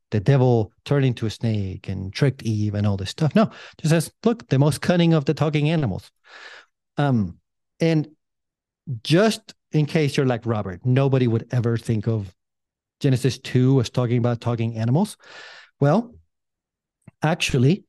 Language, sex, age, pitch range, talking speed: English, male, 40-59, 110-140 Hz, 155 wpm